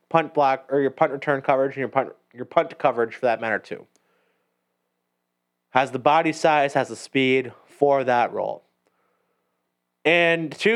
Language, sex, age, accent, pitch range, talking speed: English, male, 20-39, American, 120-160 Hz, 160 wpm